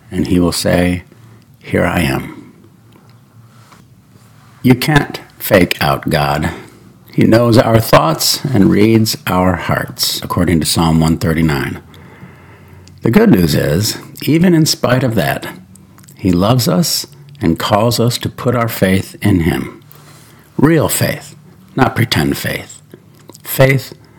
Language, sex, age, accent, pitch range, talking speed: English, male, 50-69, American, 95-140 Hz, 125 wpm